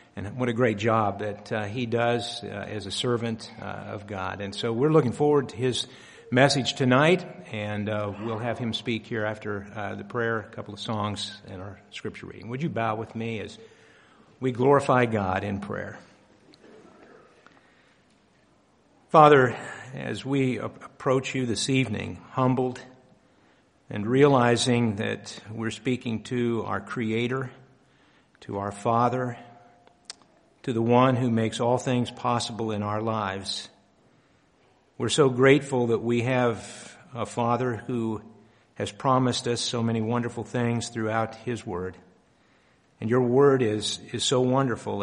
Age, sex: 50-69, male